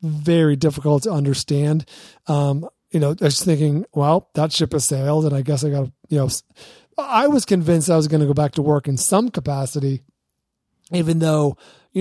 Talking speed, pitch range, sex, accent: 195 wpm, 145-170 Hz, male, American